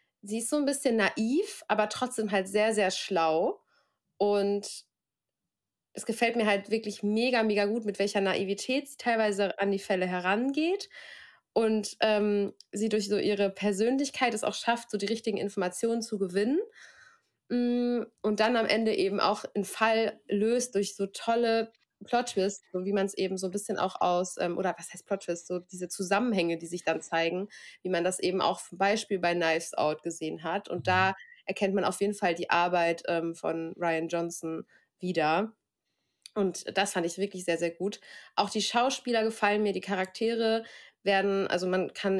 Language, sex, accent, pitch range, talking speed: German, female, German, 185-220 Hz, 180 wpm